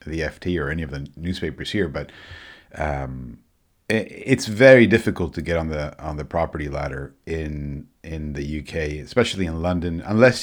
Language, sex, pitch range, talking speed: English, male, 80-105 Hz, 165 wpm